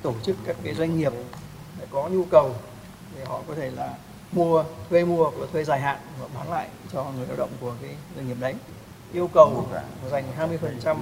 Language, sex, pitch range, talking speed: Vietnamese, male, 130-165 Hz, 200 wpm